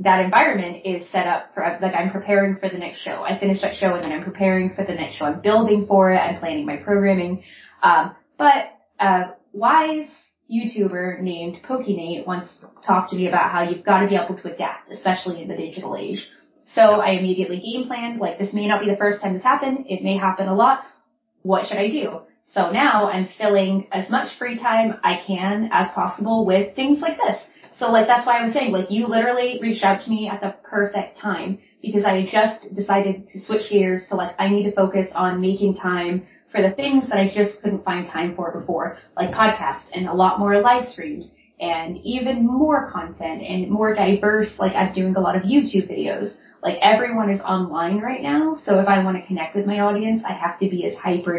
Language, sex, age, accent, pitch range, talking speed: English, female, 20-39, American, 185-220 Hz, 220 wpm